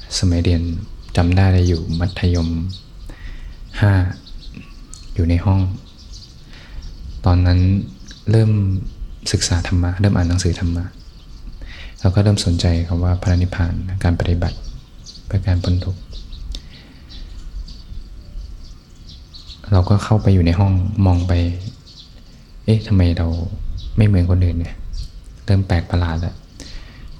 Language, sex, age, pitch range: Thai, male, 20-39, 85-100 Hz